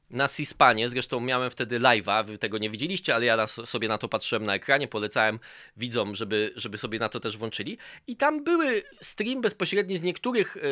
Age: 20-39